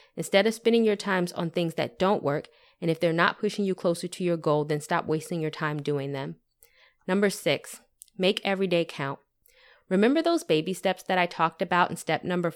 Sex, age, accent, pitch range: female, 20-39, American, 160-190 Hz